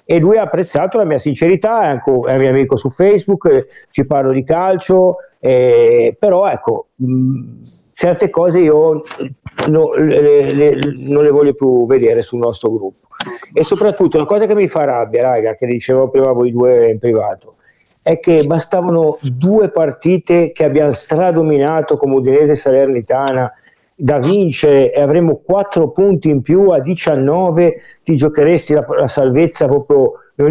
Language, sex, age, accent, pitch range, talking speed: Italian, male, 50-69, native, 140-195 Hz, 160 wpm